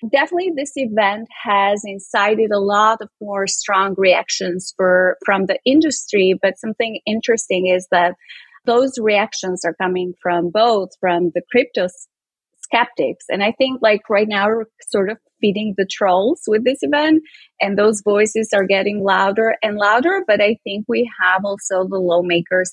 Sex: female